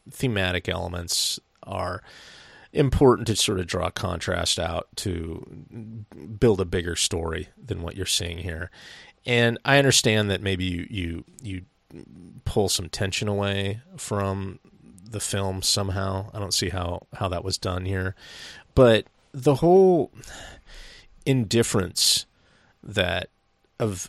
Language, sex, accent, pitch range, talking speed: English, male, American, 90-115 Hz, 125 wpm